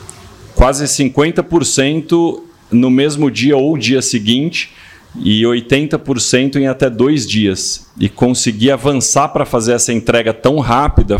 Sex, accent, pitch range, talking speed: male, Brazilian, 120-145 Hz, 125 wpm